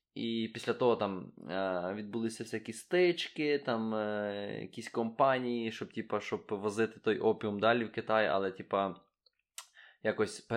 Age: 20-39